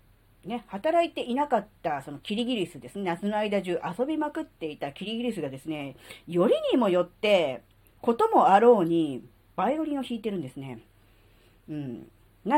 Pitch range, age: 155-230 Hz, 40-59